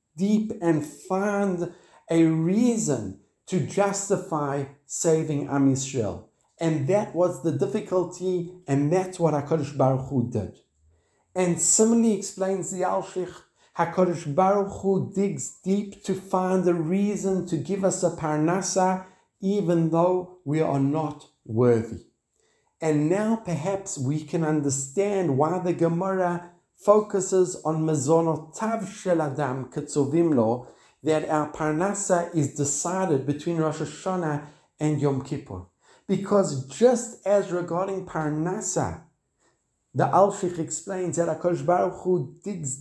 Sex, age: male, 50-69